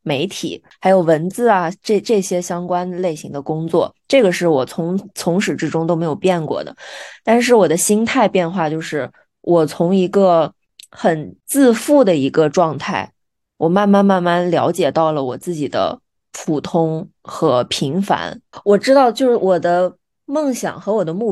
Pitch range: 165-210 Hz